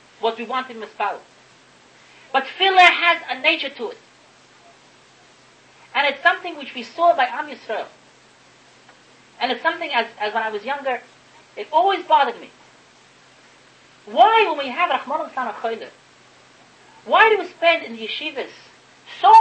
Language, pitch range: English, 225-340 Hz